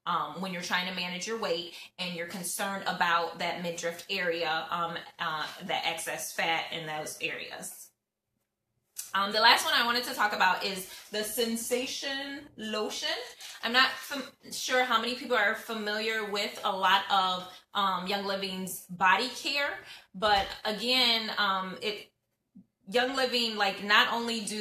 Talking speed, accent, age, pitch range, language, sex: 155 wpm, American, 20-39, 185-220 Hz, English, female